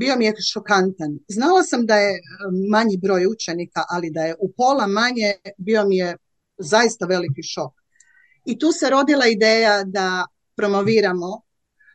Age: 40-59